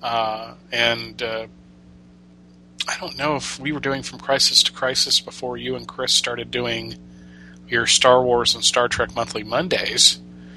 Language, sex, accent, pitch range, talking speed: English, male, American, 110-130 Hz, 160 wpm